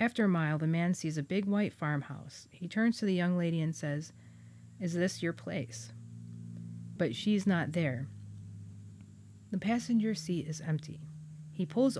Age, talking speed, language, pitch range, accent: 40-59, 165 wpm, English, 140-185 Hz, American